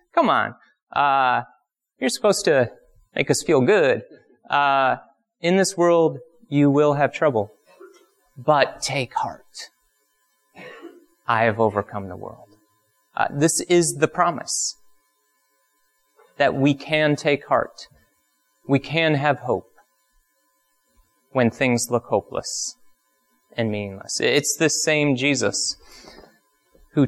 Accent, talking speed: American, 115 wpm